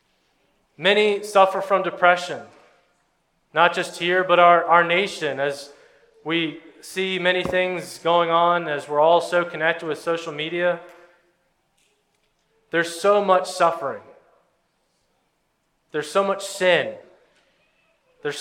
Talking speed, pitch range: 115 wpm, 160-185 Hz